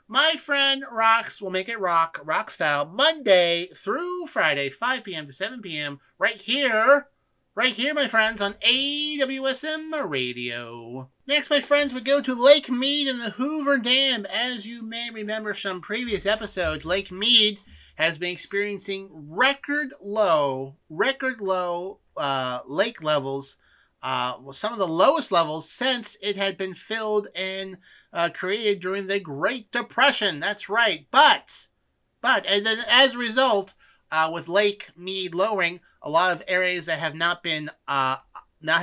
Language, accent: English, American